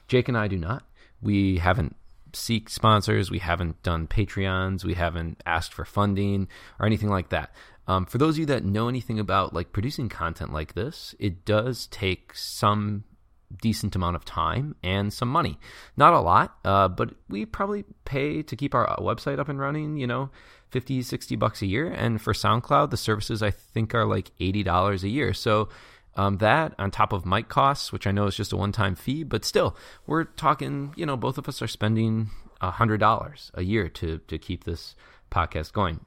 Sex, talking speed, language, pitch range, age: male, 195 wpm, English, 90-115 Hz, 20-39